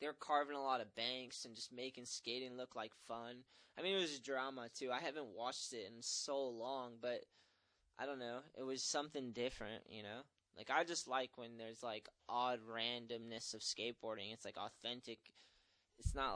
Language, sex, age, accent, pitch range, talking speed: English, male, 10-29, American, 115-130 Hz, 195 wpm